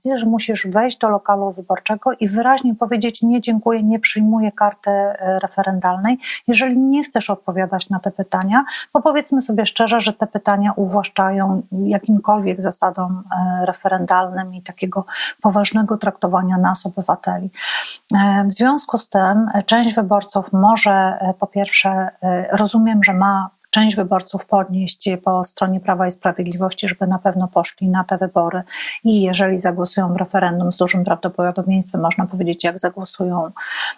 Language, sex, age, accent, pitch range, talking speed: Polish, female, 40-59, native, 190-220 Hz, 140 wpm